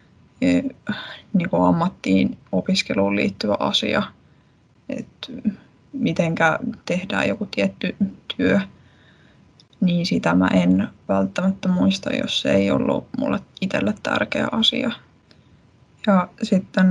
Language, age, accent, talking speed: Finnish, 20-39, native, 95 wpm